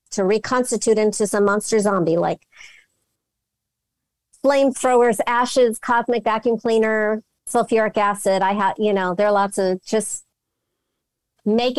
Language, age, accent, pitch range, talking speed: English, 50-69, American, 195-255 Hz, 120 wpm